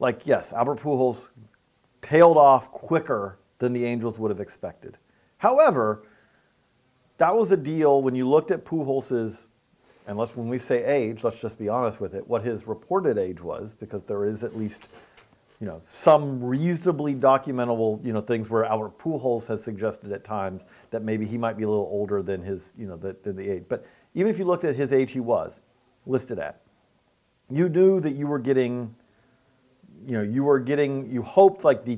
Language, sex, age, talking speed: English, male, 40-59, 190 wpm